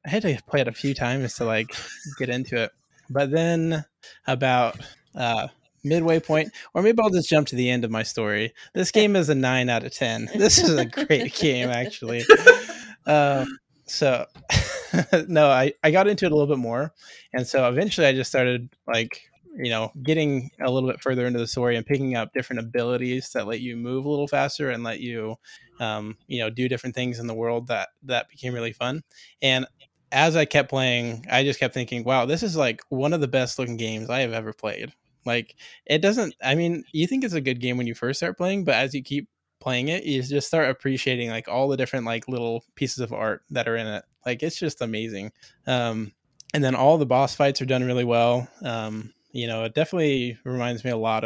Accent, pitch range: American, 120-145 Hz